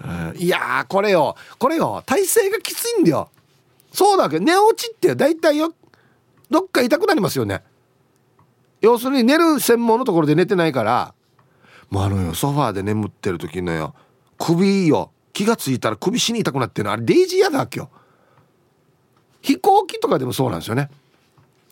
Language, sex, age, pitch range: Japanese, male, 40-59, 125-175 Hz